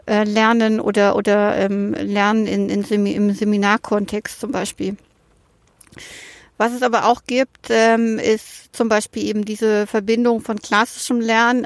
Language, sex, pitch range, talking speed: German, female, 215-245 Hz, 140 wpm